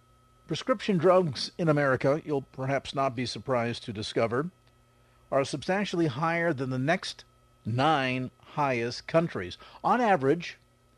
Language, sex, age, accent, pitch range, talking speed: English, male, 50-69, American, 115-150 Hz, 120 wpm